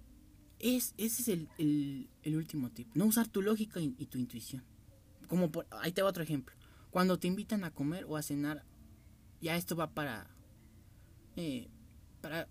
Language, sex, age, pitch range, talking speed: Spanish, male, 30-49, 105-155 Hz, 175 wpm